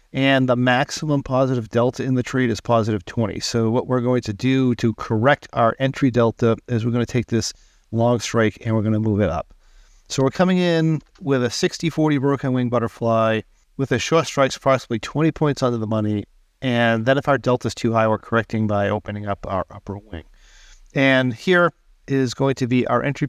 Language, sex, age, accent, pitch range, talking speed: English, male, 40-59, American, 110-135 Hz, 215 wpm